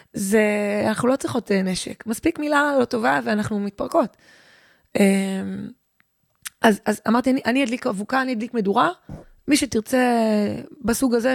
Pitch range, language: 205-250 Hz, Hebrew